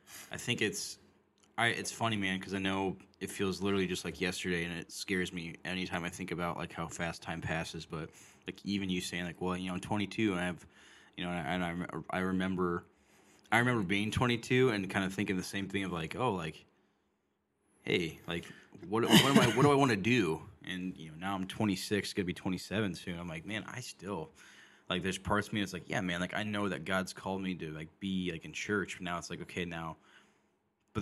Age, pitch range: 10-29, 90-105 Hz